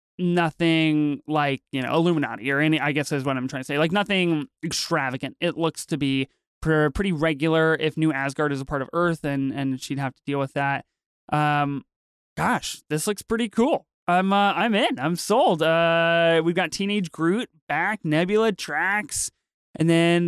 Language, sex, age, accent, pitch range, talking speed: English, male, 20-39, American, 150-185 Hz, 185 wpm